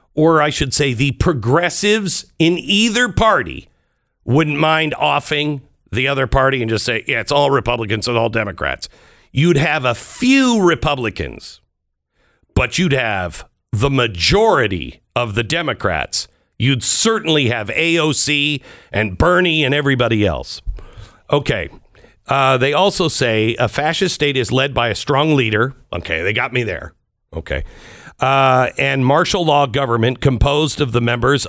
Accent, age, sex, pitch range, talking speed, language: American, 50-69, male, 115-160 Hz, 145 wpm, English